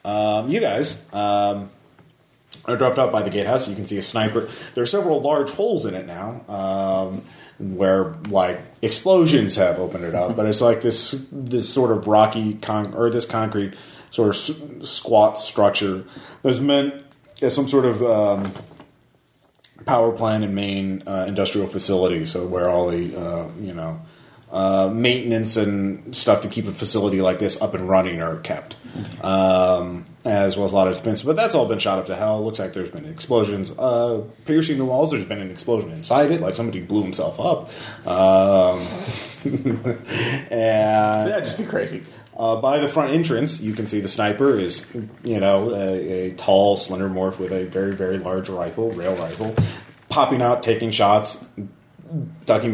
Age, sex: 30-49, male